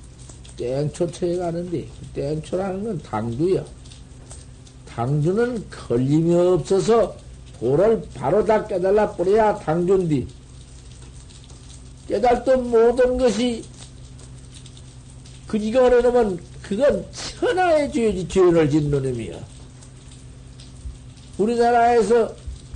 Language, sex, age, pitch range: Korean, male, 60-79, 145-215 Hz